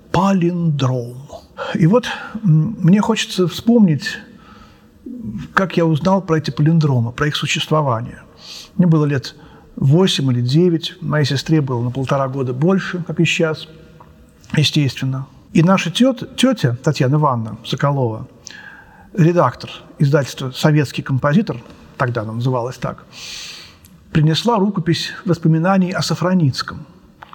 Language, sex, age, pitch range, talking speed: Russian, male, 50-69, 140-185 Hz, 115 wpm